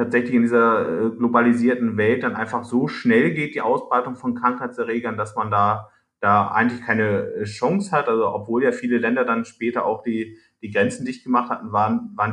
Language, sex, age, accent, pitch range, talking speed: German, male, 30-49, German, 100-120 Hz, 185 wpm